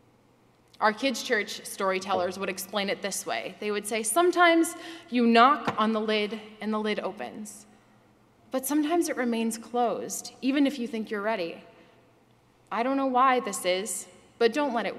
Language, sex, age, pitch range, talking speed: English, female, 20-39, 200-245 Hz, 170 wpm